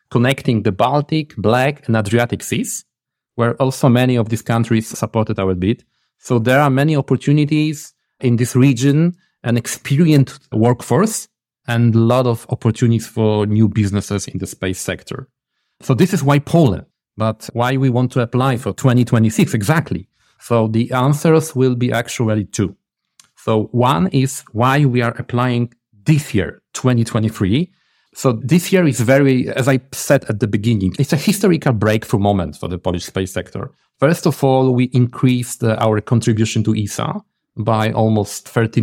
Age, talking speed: 40-59, 160 wpm